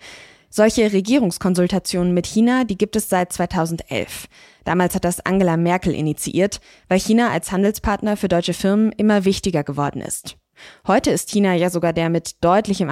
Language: German